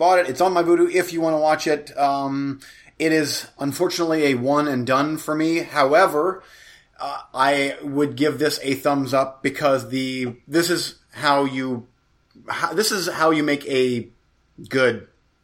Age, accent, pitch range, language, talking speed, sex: 30-49, American, 125-160 Hz, English, 170 wpm, male